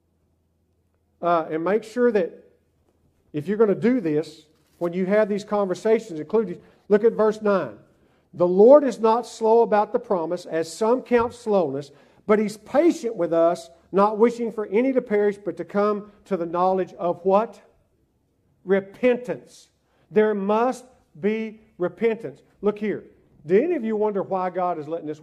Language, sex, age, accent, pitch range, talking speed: English, male, 50-69, American, 165-225 Hz, 160 wpm